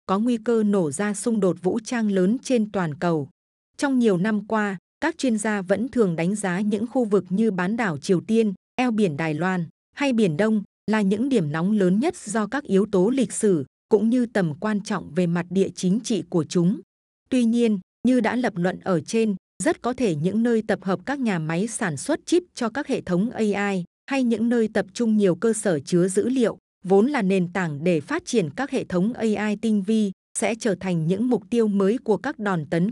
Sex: female